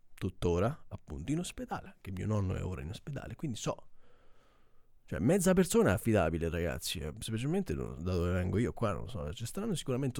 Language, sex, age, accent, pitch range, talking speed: Italian, male, 30-49, native, 90-120 Hz, 190 wpm